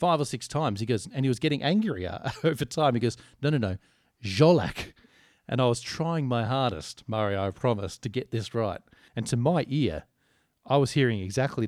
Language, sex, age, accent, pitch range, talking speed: English, male, 40-59, Australian, 110-135 Hz, 205 wpm